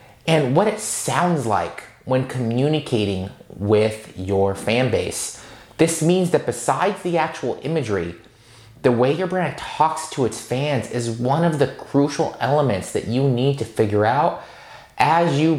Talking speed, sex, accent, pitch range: 155 wpm, male, American, 115-160 Hz